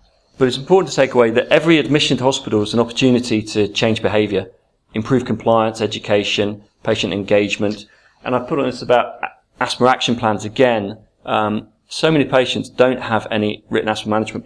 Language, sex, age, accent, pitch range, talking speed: English, male, 40-59, British, 105-130 Hz, 175 wpm